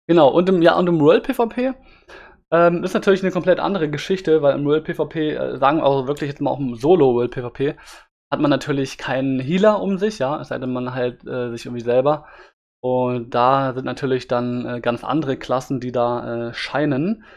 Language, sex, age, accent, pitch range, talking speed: German, male, 20-39, German, 130-155 Hz, 210 wpm